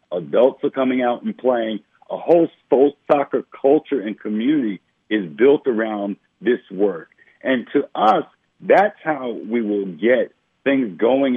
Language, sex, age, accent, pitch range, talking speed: English, male, 50-69, American, 110-140 Hz, 145 wpm